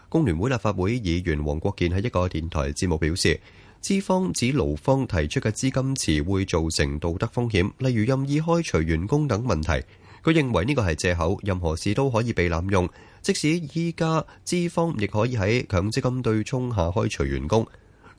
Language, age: Chinese, 30-49